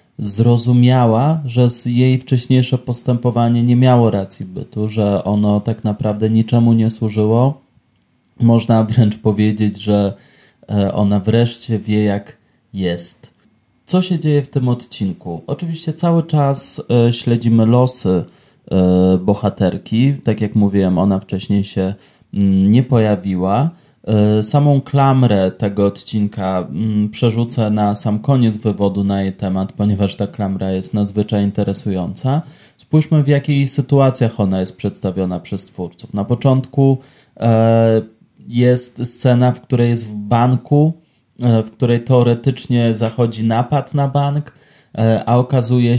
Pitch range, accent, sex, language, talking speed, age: 105-125 Hz, native, male, Polish, 115 wpm, 20-39